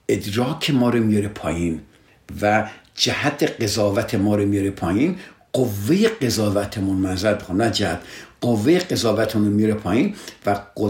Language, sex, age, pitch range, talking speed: Persian, male, 60-79, 100-125 Hz, 120 wpm